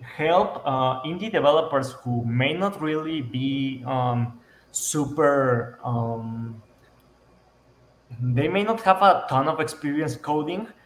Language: English